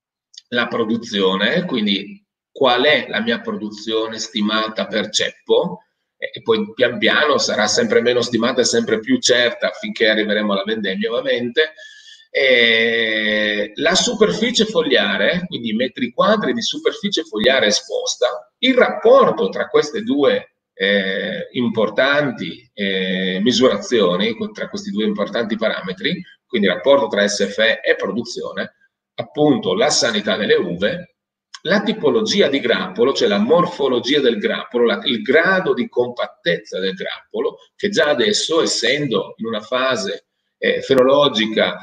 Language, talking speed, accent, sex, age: Italian, 130 wpm, native, male, 40-59